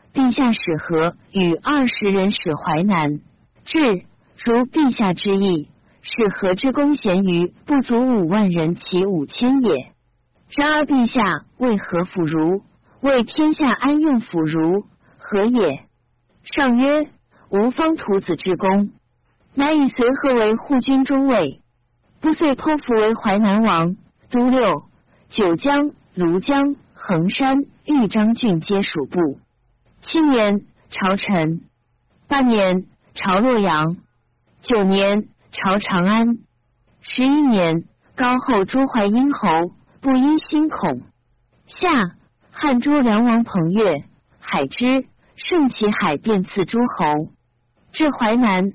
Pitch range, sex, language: 185-265 Hz, female, Chinese